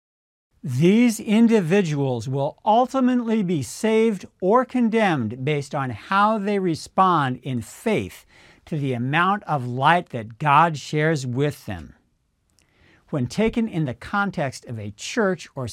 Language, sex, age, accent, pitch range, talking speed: English, male, 50-69, American, 125-190 Hz, 130 wpm